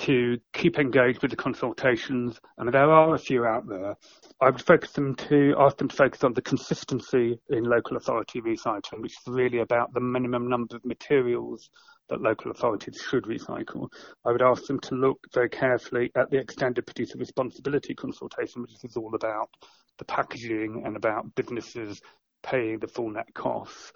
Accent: British